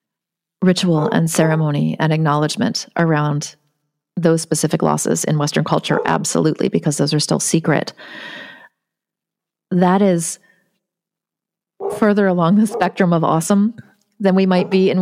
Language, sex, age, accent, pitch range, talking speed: English, female, 30-49, American, 160-195 Hz, 125 wpm